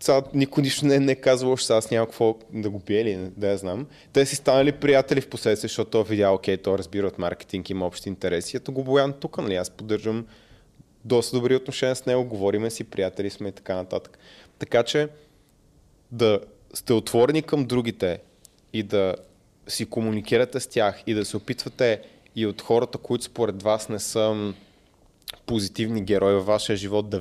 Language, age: Bulgarian, 20-39